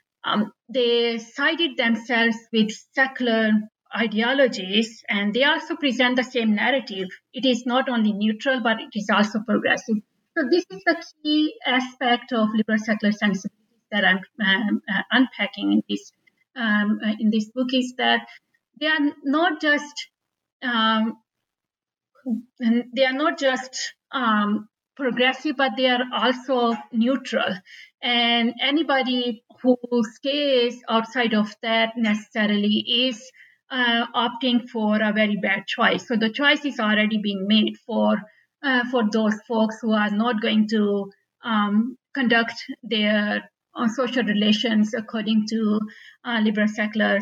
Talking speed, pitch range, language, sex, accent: 135 wpm, 215-255 Hz, English, female, Indian